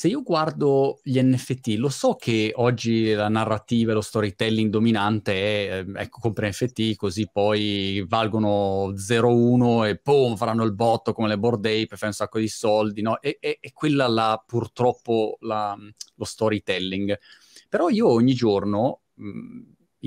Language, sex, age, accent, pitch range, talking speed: Italian, male, 20-39, native, 105-130 Hz, 150 wpm